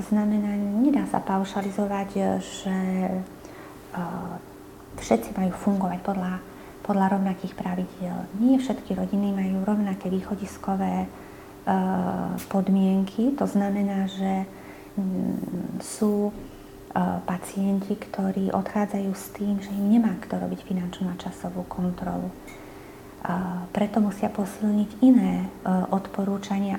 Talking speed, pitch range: 95 wpm, 190-210 Hz